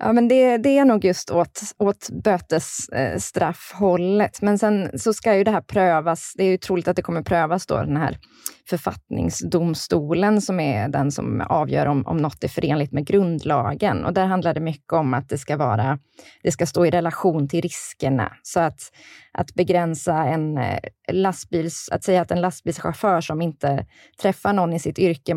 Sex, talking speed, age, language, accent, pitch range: female, 180 wpm, 20-39, Swedish, native, 145-185 Hz